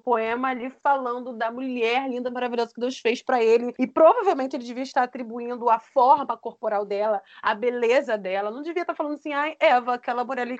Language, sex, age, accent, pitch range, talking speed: Portuguese, female, 20-39, Brazilian, 245-320 Hz, 195 wpm